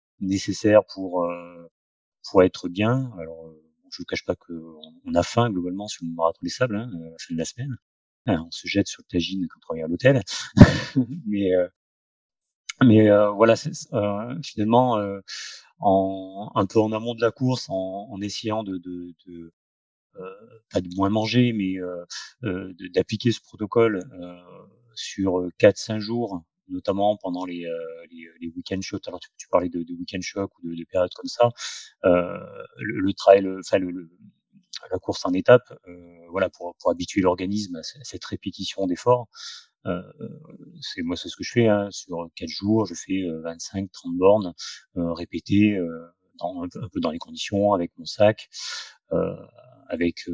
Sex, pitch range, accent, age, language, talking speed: male, 85-110 Hz, French, 30-49, French, 190 wpm